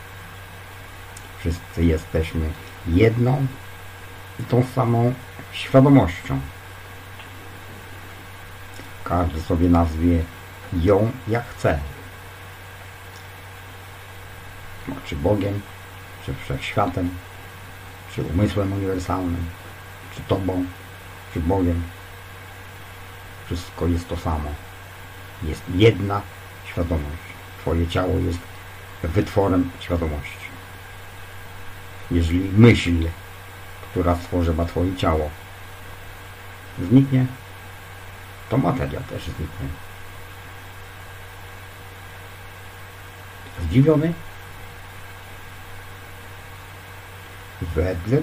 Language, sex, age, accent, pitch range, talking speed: English, male, 50-69, Polish, 95-100 Hz, 60 wpm